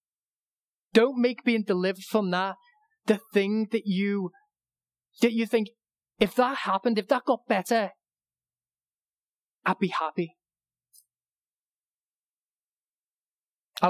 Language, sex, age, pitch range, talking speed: English, male, 30-49, 170-220 Hz, 105 wpm